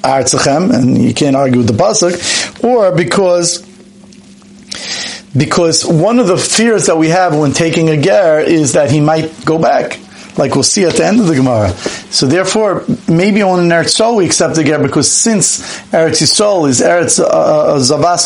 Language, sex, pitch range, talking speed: English, male, 140-195 Hz, 185 wpm